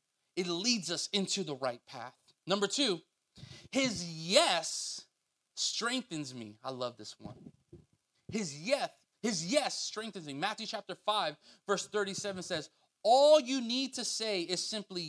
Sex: male